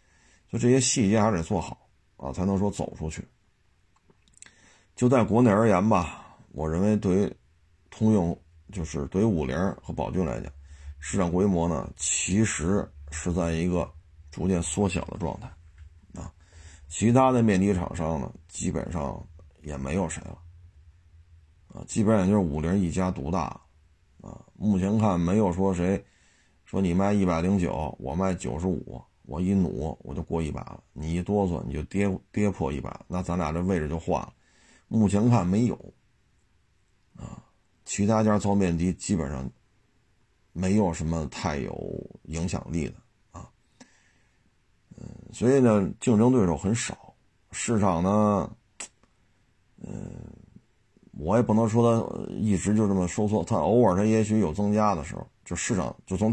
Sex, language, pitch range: male, Chinese, 80-105 Hz